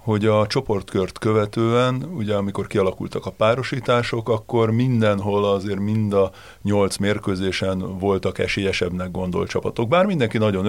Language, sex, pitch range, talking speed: Hungarian, male, 95-115 Hz, 130 wpm